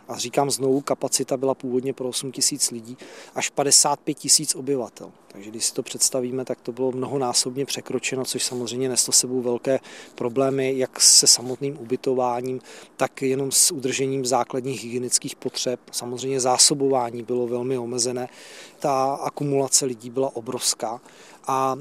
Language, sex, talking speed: Czech, male, 145 wpm